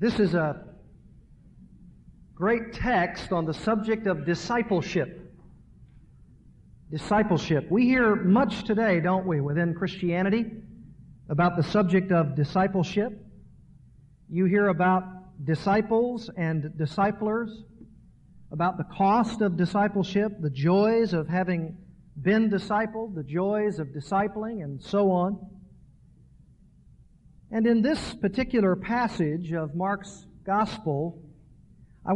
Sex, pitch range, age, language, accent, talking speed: male, 170-215 Hz, 50-69, English, American, 105 wpm